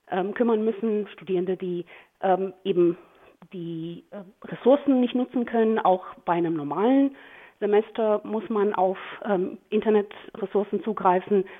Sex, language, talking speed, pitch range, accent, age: female, German, 120 wpm, 185-235 Hz, German, 30-49